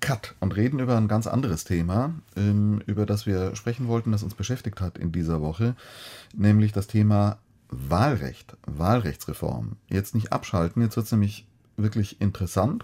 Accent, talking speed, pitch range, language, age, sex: German, 155 wpm, 95-115 Hz, German, 30-49, male